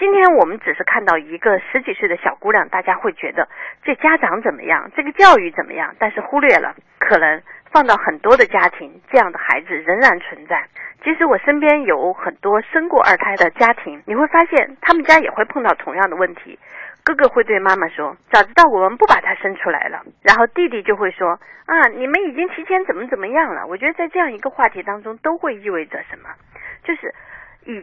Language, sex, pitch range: Chinese, female, 215-330 Hz